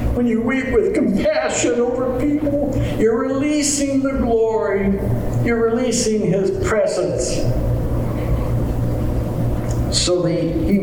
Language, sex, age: English, male, 60-79